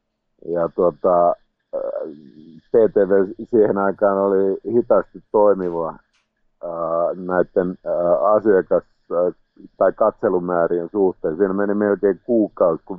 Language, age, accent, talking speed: Finnish, 50-69, native, 90 wpm